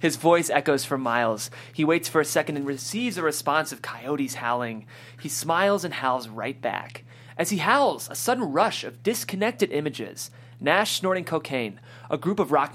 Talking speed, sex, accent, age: 185 wpm, male, American, 30-49